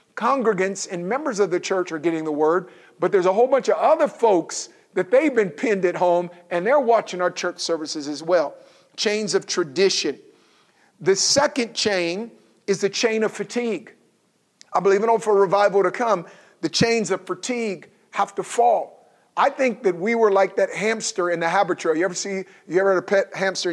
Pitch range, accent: 170-215 Hz, American